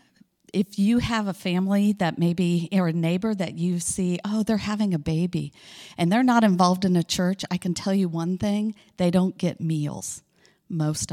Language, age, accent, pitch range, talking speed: English, 50-69, American, 160-195 Hz, 195 wpm